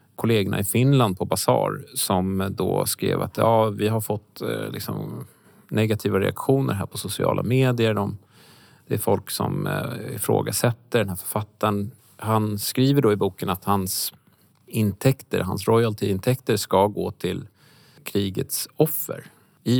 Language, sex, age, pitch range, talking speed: Swedish, male, 30-49, 95-115 Hz, 135 wpm